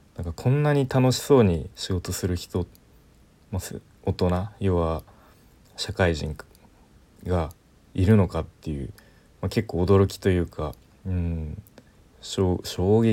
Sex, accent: male, native